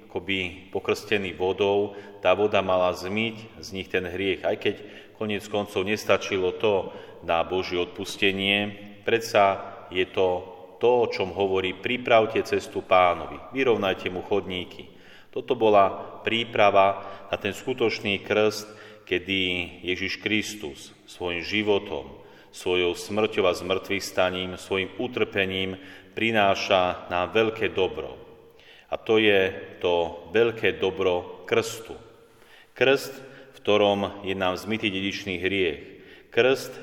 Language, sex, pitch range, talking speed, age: Slovak, male, 90-105 Hz, 115 wpm, 40-59